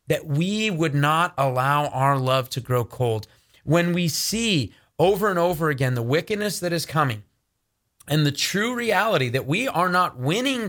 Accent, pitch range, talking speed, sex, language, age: American, 135-185 Hz, 175 wpm, male, English, 30-49